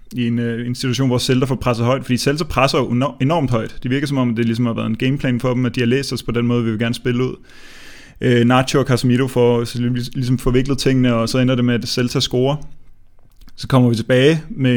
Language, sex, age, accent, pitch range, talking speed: Danish, male, 30-49, native, 120-130 Hz, 240 wpm